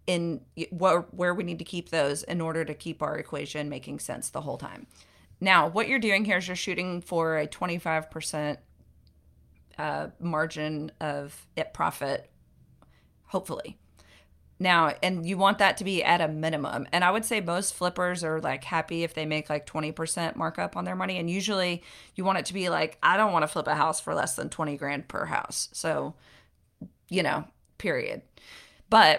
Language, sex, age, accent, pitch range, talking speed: English, female, 30-49, American, 150-180 Hz, 185 wpm